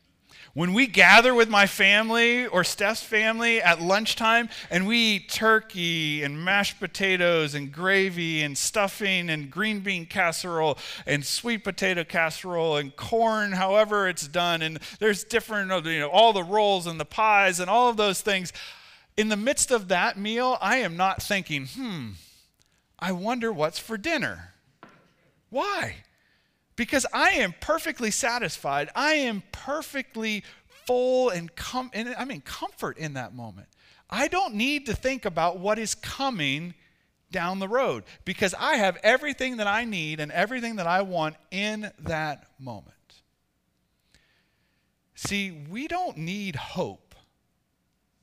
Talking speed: 145 wpm